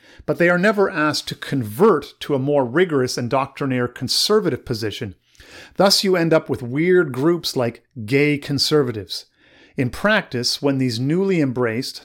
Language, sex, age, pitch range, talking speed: English, male, 50-69, 125-160 Hz, 155 wpm